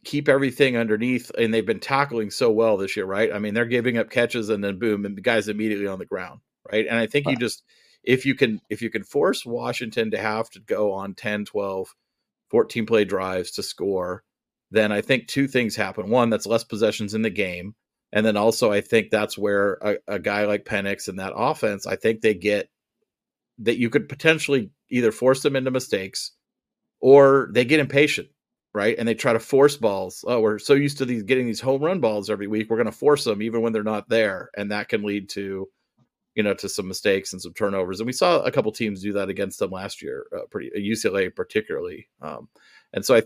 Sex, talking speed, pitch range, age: male, 225 wpm, 100-130 Hz, 40-59